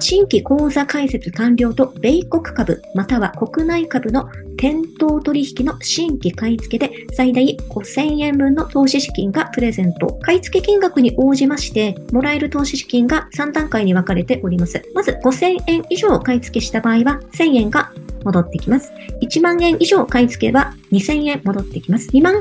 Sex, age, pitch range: male, 40-59, 215-300 Hz